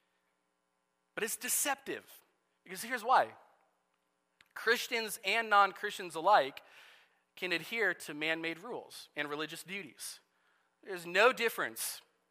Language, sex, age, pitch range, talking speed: English, male, 40-59, 135-195 Hz, 100 wpm